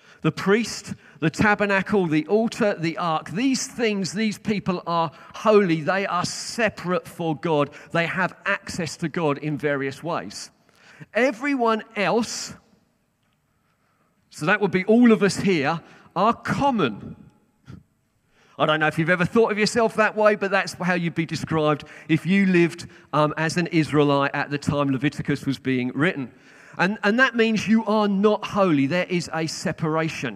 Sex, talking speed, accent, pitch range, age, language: male, 160 wpm, British, 160-215 Hz, 40-59, English